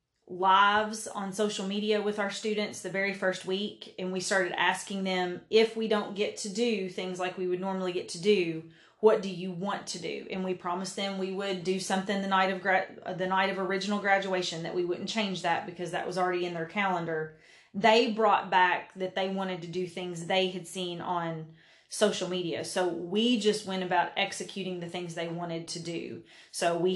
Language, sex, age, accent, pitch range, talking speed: English, female, 30-49, American, 180-205 Hz, 205 wpm